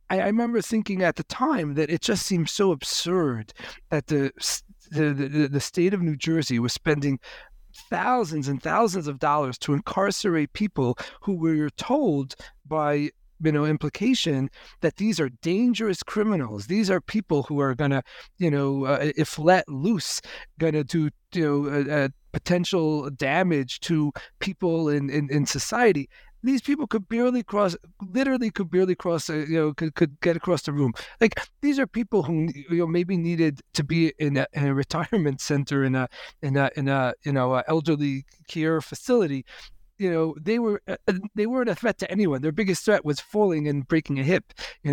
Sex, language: male, English